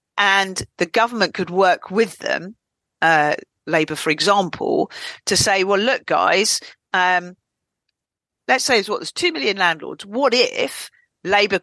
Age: 40-59